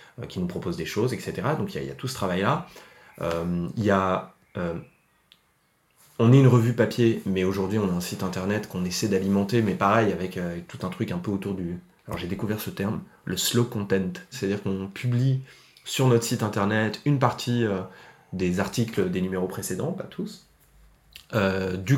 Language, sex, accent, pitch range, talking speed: French, male, French, 95-115 Hz, 195 wpm